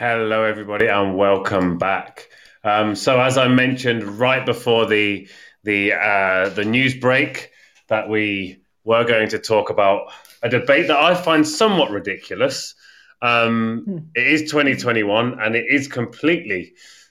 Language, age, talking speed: English, 30-49, 145 wpm